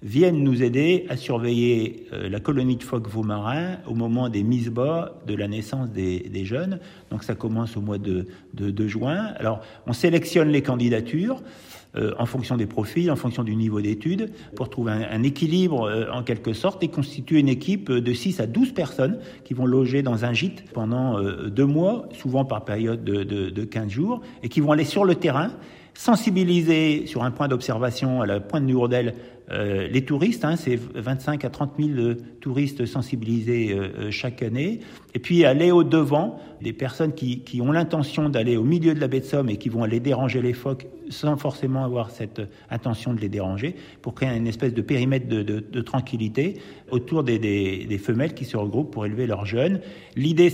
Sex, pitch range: male, 115-150 Hz